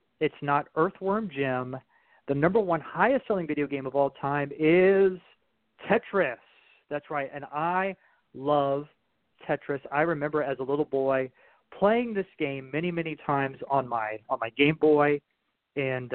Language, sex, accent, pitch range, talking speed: English, male, American, 135-170 Hz, 150 wpm